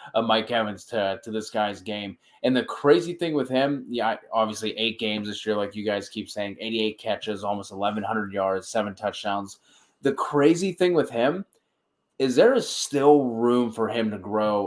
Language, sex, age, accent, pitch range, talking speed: English, male, 20-39, American, 105-115 Hz, 190 wpm